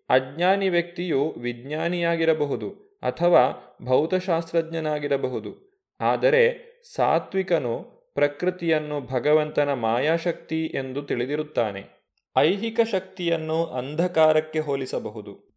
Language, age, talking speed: Kannada, 30-49, 60 wpm